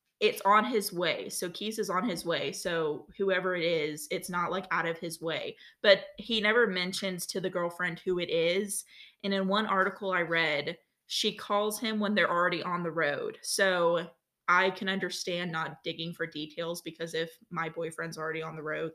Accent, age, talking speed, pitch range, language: American, 20-39, 195 wpm, 170-205 Hz, English